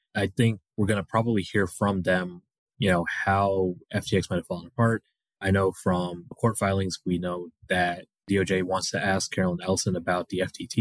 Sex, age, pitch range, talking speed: male, 20-39, 90-100 Hz, 190 wpm